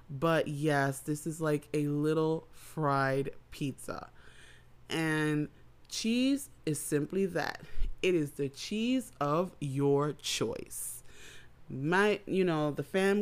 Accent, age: American, 30-49